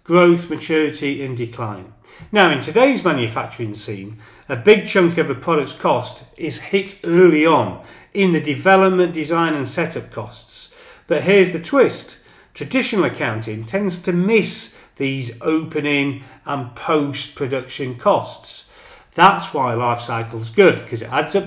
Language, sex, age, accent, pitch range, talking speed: English, male, 40-59, British, 120-180 Hz, 145 wpm